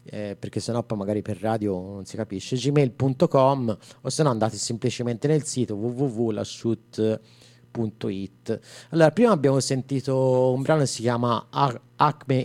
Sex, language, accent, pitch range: male, Italian, native, 115-135 Hz